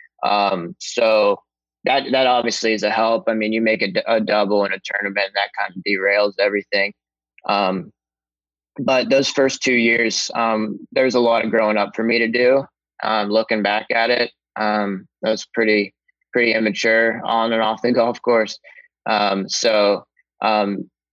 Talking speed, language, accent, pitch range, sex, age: 175 wpm, English, American, 105-120 Hz, male, 20-39